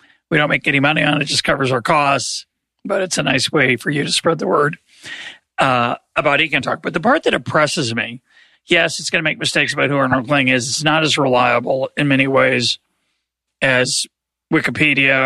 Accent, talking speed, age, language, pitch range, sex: American, 205 wpm, 40-59, English, 130-155 Hz, male